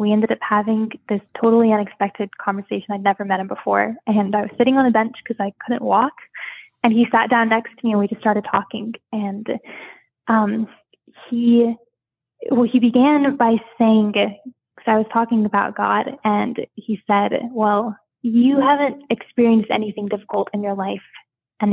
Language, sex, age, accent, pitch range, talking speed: English, female, 10-29, American, 205-240 Hz, 175 wpm